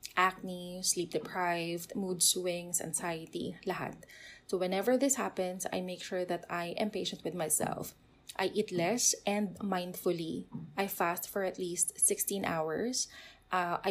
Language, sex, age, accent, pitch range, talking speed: English, female, 20-39, Filipino, 180-235 Hz, 140 wpm